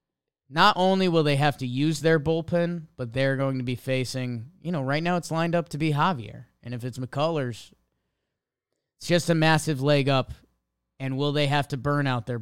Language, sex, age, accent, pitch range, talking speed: English, male, 20-39, American, 125-165 Hz, 210 wpm